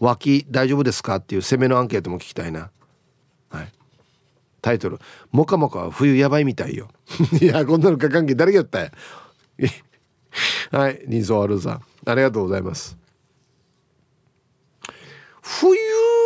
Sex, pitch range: male, 110-165 Hz